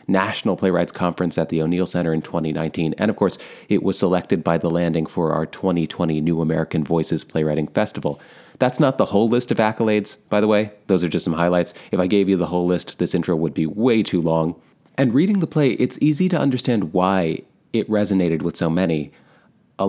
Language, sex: English, male